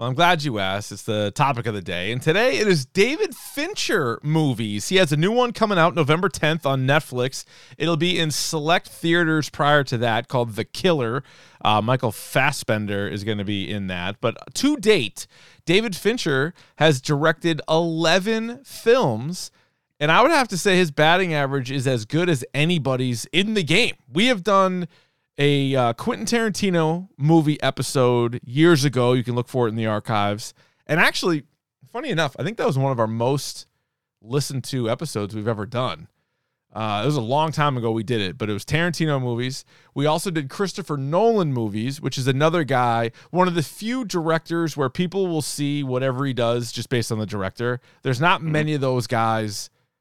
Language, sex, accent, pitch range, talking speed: English, male, American, 120-165 Hz, 190 wpm